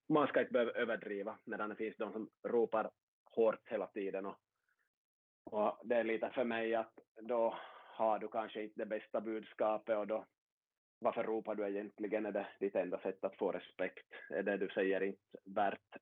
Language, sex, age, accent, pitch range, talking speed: Swedish, male, 20-39, Finnish, 105-125 Hz, 185 wpm